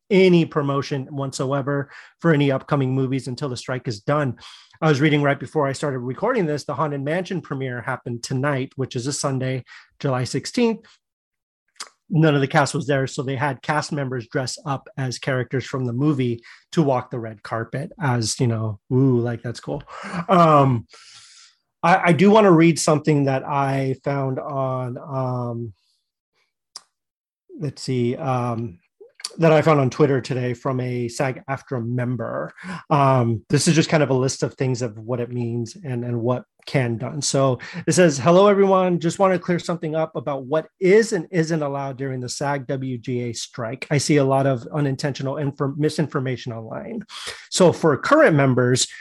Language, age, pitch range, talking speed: English, 30-49, 130-155 Hz, 175 wpm